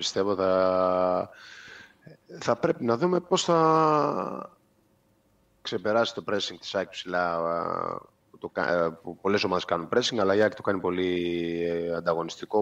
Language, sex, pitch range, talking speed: Greek, male, 90-110 Hz, 130 wpm